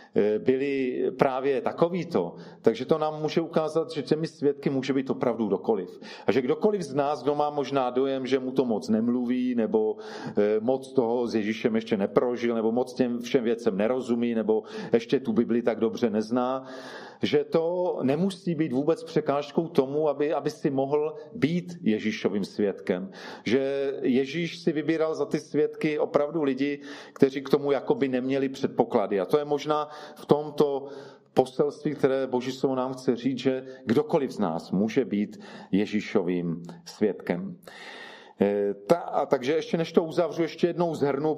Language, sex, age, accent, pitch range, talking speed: Czech, male, 40-59, native, 130-160 Hz, 160 wpm